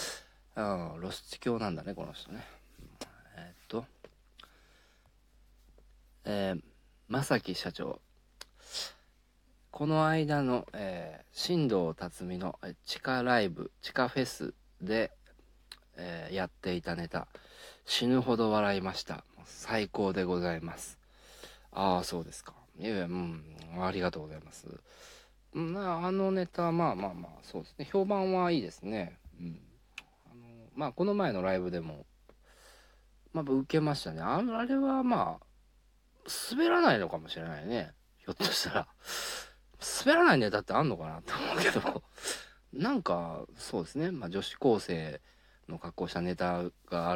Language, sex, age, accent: Japanese, male, 40-59, native